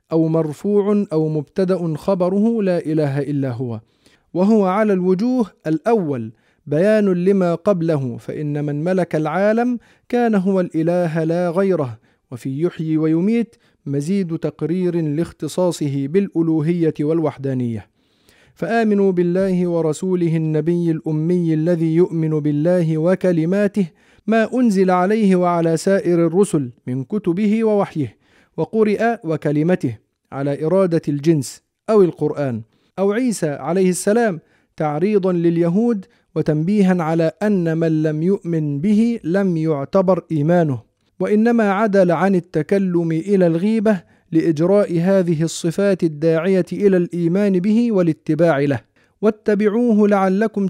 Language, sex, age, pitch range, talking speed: Arabic, male, 40-59, 155-200 Hz, 110 wpm